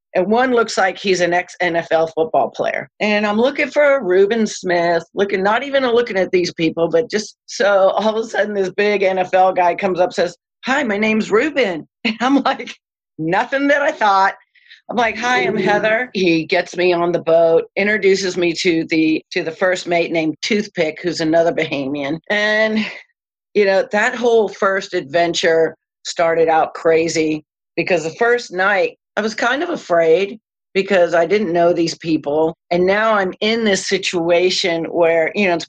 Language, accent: English, American